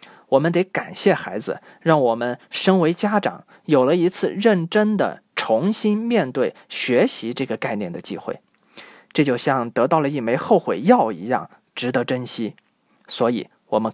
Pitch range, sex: 145-220 Hz, male